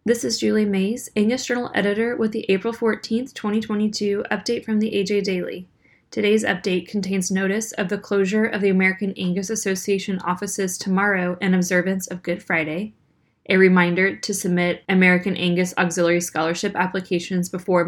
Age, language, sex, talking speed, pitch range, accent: 10-29, English, female, 155 wpm, 170-195 Hz, American